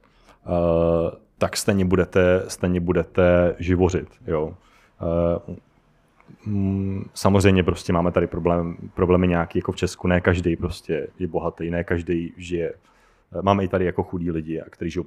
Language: Czech